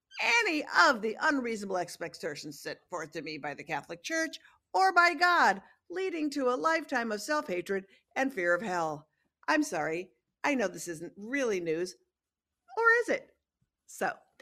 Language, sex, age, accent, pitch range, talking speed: English, female, 50-69, American, 180-270 Hz, 160 wpm